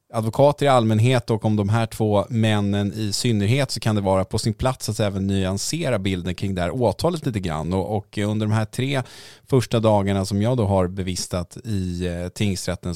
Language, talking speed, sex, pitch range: English, 190 wpm, male, 90-115 Hz